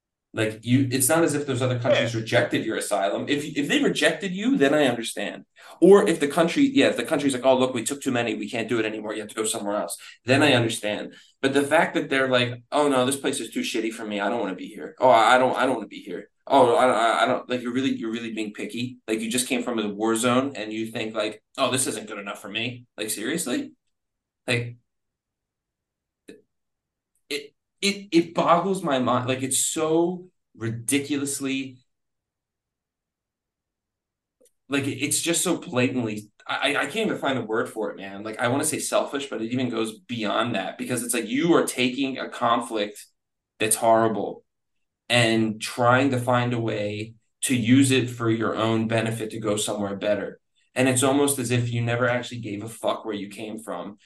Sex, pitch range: male, 110-135 Hz